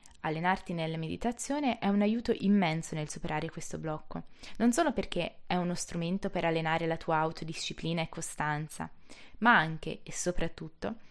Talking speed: 150 wpm